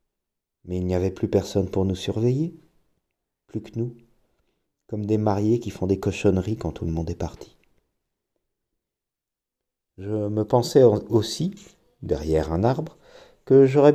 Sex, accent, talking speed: male, French, 145 wpm